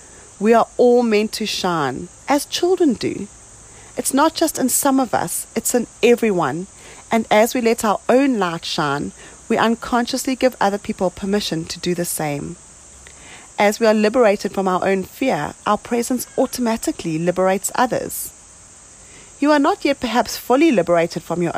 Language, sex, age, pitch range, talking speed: English, female, 30-49, 175-245 Hz, 165 wpm